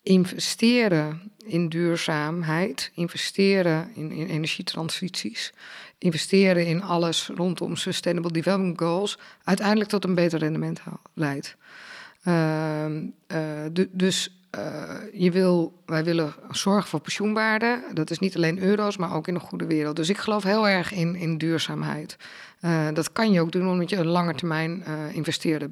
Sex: female